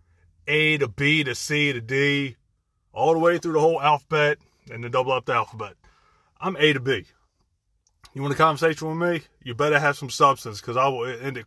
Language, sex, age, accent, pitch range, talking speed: English, male, 30-49, American, 100-160 Hz, 210 wpm